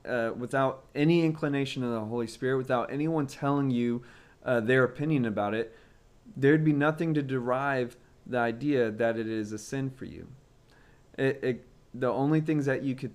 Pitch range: 115-140 Hz